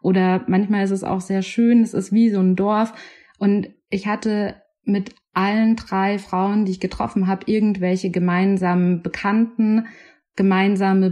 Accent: German